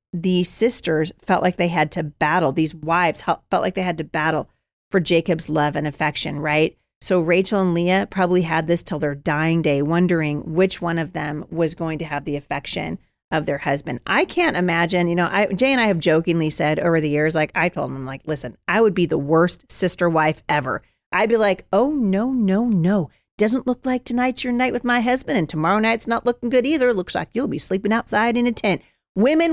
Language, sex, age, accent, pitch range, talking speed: English, female, 40-59, American, 155-205 Hz, 220 wpm